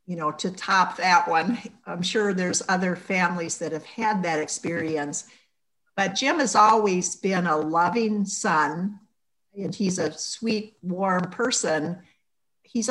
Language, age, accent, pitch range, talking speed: English, 60-79, American, 165-210 Hz, 145 wpm